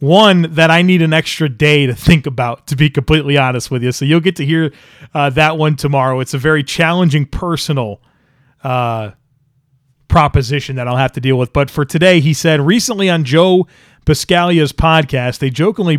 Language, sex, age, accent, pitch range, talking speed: English, male, 30-49, American, 135-170 Hz, 190 wpm